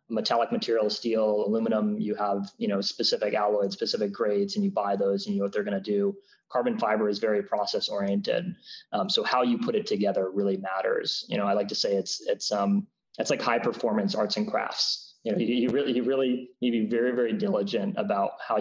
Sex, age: male, 20-39